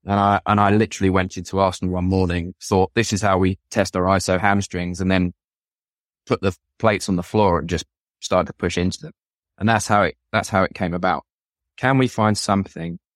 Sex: male